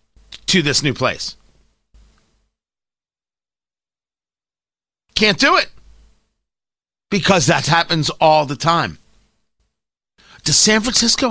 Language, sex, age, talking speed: English, male, 40-59, 85 wpm